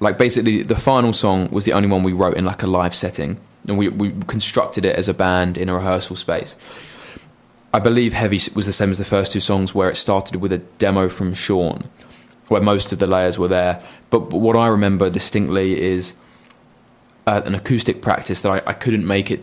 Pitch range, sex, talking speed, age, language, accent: 95-105 Hz, male, 220 wpm, 20-39, English, British